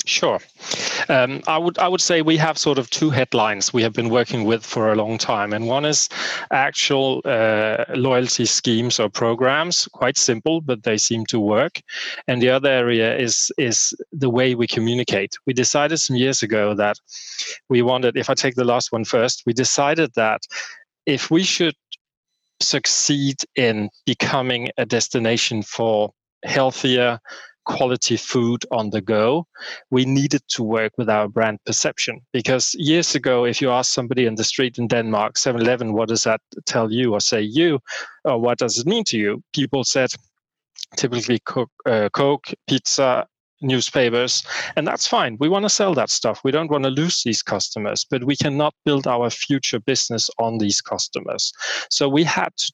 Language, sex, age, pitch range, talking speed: English, male, 30-49, 115-140 Hz, 175 wpm